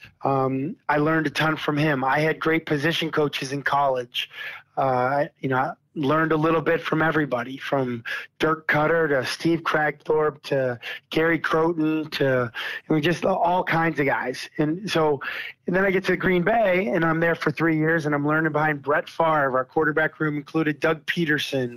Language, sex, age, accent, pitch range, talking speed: English, male, 30-49, American, 140-165 Hz, 190 wpm